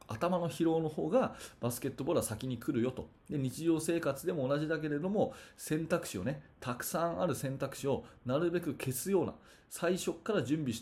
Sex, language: male, Japanese